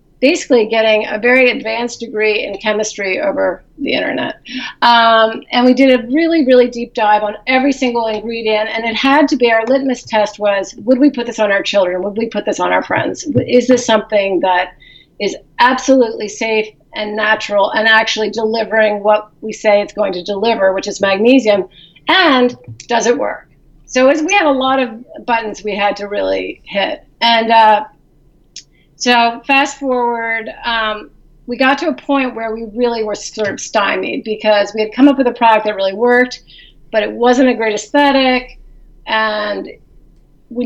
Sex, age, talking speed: female, 40-59, 180 wpm